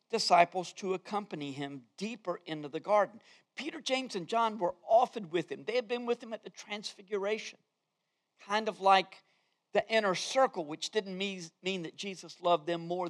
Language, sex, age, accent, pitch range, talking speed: English, male, 50-69, American, 180-250 Hz, 180 wpm